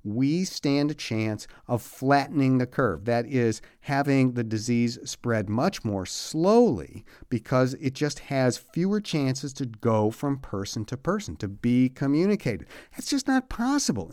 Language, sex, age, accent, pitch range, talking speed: English, male, 50-69, American, 115-150 Hz, 155 wpm